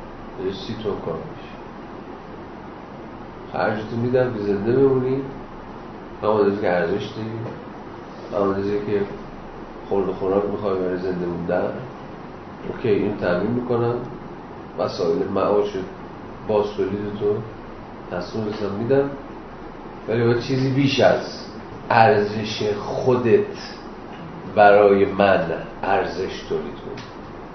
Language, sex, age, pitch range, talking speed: Persian, male, 40-59, 100-120 Hz, 95 wpm